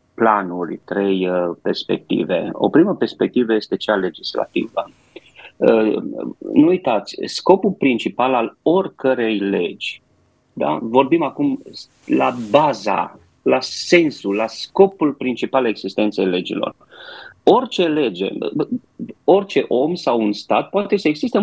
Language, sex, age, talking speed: Romanian, male, 30-49, 105 wpm